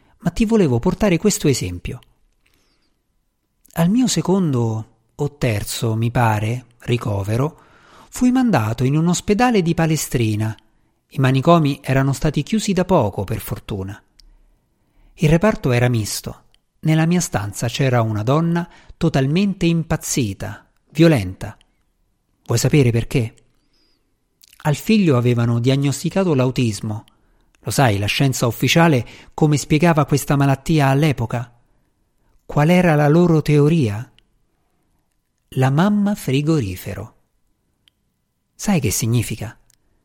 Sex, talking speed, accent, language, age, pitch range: male, 110 wpm, native, Italian, 50-69, 115-165 Hz